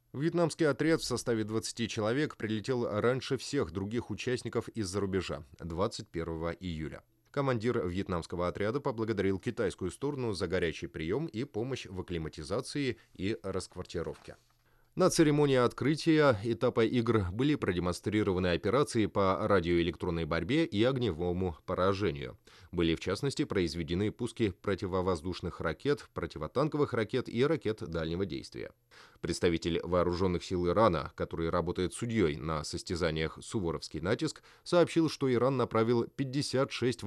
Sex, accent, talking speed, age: male, native, 120 wpm, 20-39